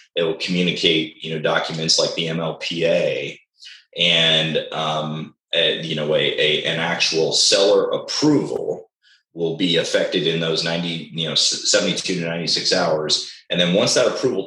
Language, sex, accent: English, male, American